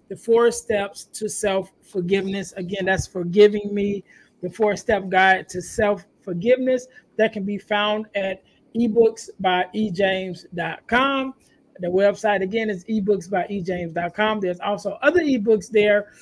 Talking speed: 110 wpm